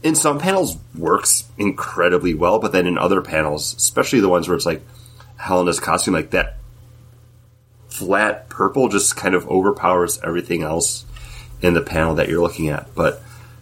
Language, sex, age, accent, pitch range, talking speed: English, male, 30-49, American, 85-120 Hz, 165 wpm